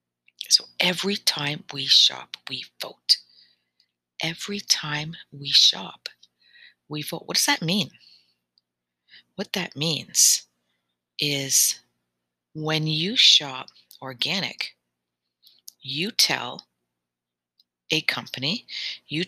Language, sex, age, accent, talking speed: English, female, 50-69, American, 95 wpm